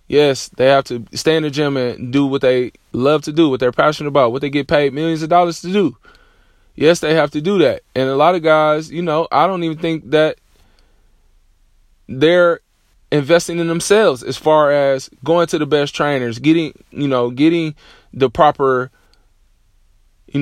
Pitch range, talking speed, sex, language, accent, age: 130-165 Hz, 190 wpm, male, English, American, 20-39